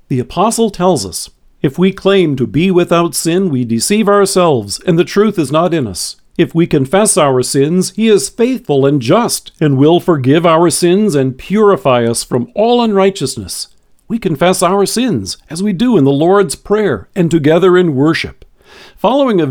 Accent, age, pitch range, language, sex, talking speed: American, 50-69, 140-190 Hz, English, male, 180 wpm